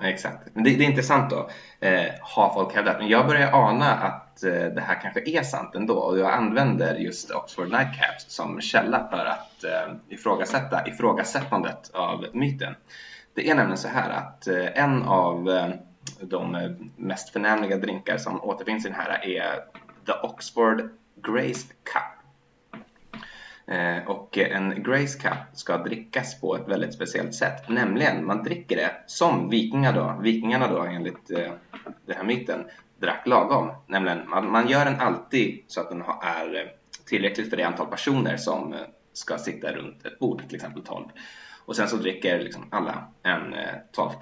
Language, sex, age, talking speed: Swedish, male, 20-39, 155 wpm